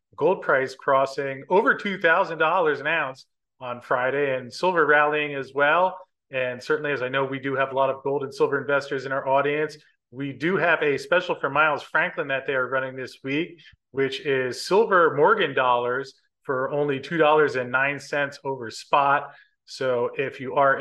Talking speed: 190 wpm